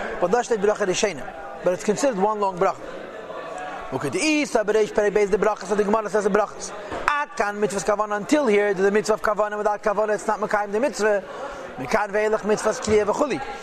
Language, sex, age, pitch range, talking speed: English, male, 40-59, 215-245 Hz, 90 wpm